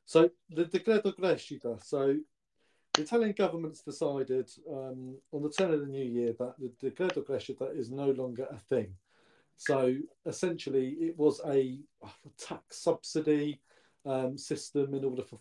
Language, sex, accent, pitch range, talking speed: English, male, British, 125-165 Hz, 150 wpm